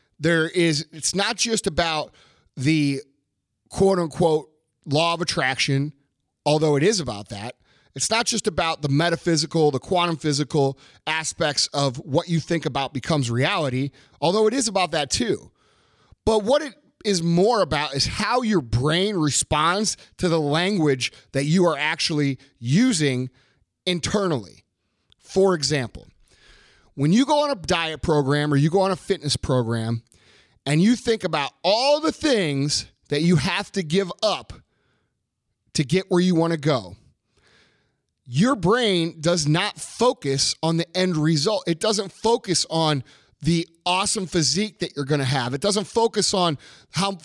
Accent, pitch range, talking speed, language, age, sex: American, 145-195 Hz, 155 wpm, English, 30-49, male